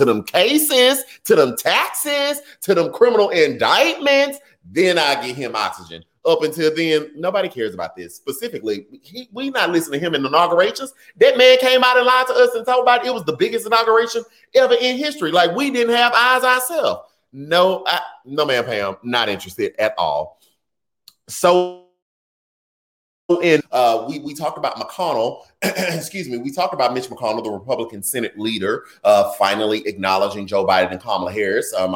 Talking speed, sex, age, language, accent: 180 wpm, male, 30-49, English, American